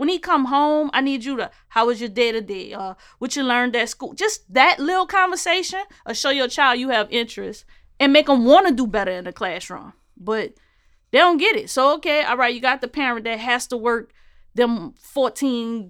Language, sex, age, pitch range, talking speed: English, female, 20-39, 230-275 Hz, 225 wpm